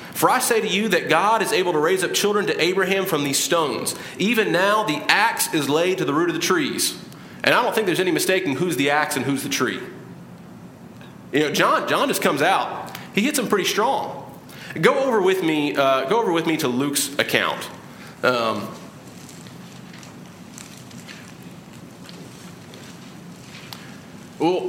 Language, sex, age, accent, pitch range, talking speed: English, male, 30-49, American, 135-185 Hz, 170 wpm